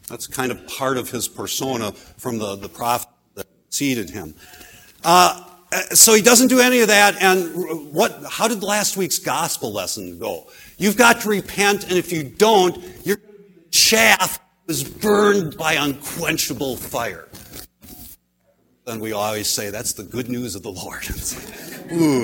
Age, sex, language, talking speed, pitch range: 60-79, male, English, 160 wpm, 120-200 Hz